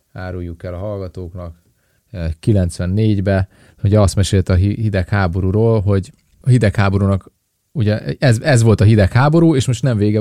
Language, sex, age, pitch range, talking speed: Hungarian, male, 30-49, 95-120 Hz, 135 wpm